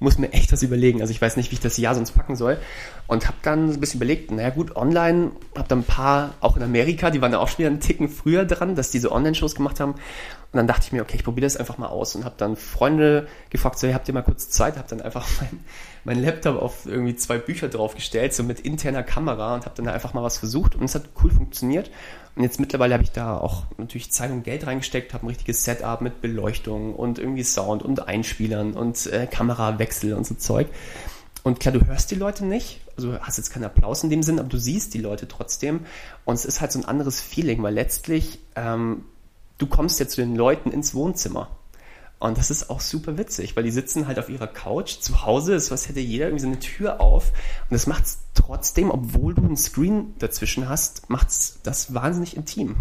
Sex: male